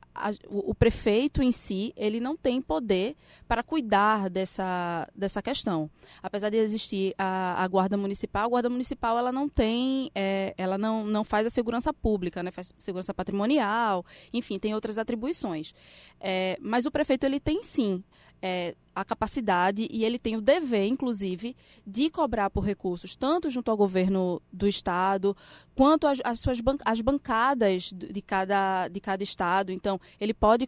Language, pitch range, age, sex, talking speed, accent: Portuguese, 195-240 Hz, 10-29, female, 160 wpm, Brazilian